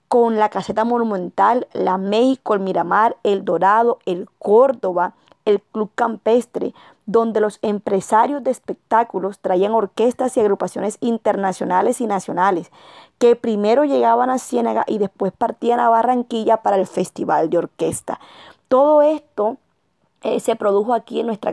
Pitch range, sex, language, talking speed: 195-240 Hz, female, Spanish, 140 wpm